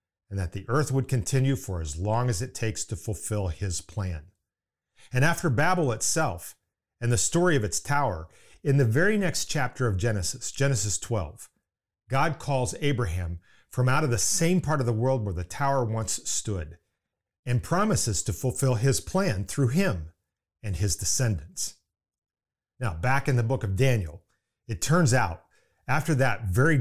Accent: American